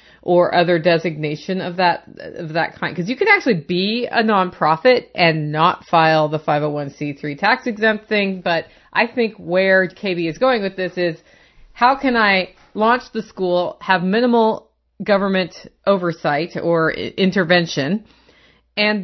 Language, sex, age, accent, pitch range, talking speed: English, female, 30-49, American, 175-235 Hz, 145 wpm